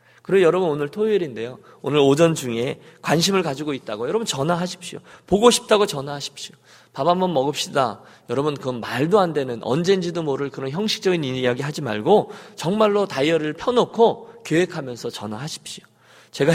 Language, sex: Korean, male